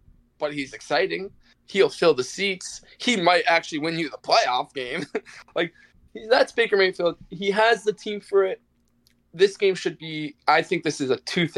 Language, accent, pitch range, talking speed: English, American, 145-200 Hz, 180 wpm